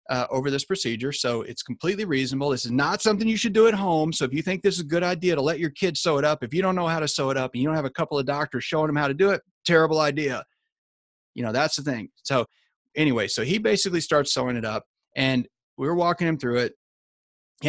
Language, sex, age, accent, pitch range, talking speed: English, male, 30-49, American, 135-180 Hz, 270 wpm